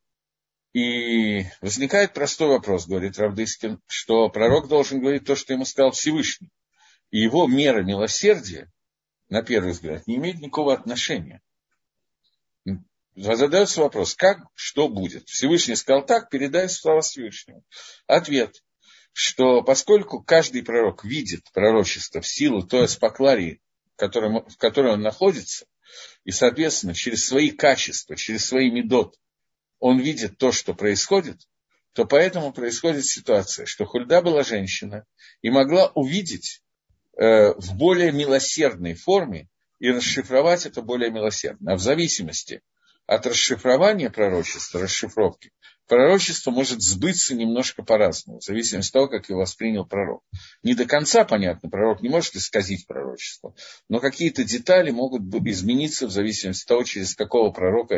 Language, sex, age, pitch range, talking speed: Russian, male, 50-69, 105-160 Hz, 130 wpm